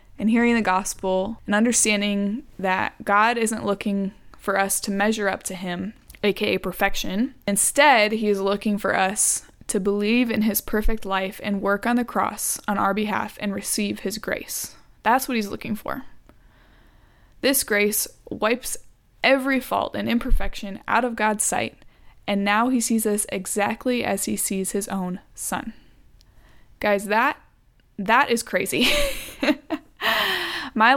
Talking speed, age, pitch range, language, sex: 150 wpm, 20-39, 200-245 Hz, English, female